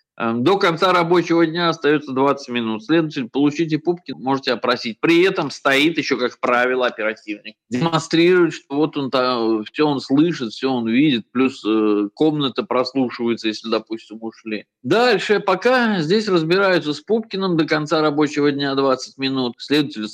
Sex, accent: male, native